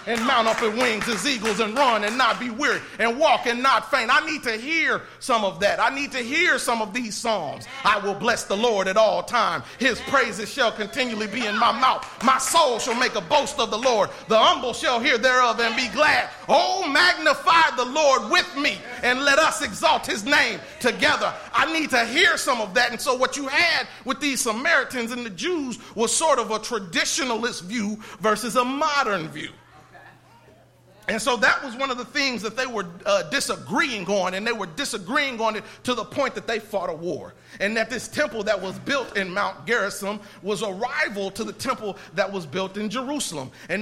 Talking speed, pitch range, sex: 215 wpm, 210-270 Hz, male